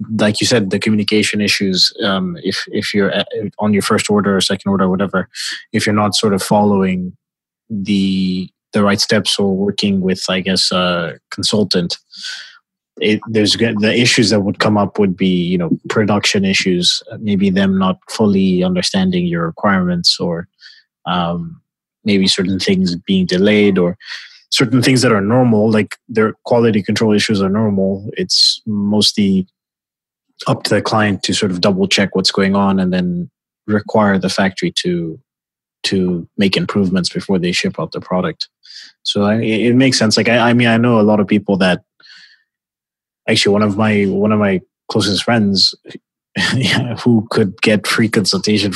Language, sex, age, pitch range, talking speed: English, male, 20-39, 95-125 Hz, 170 wpm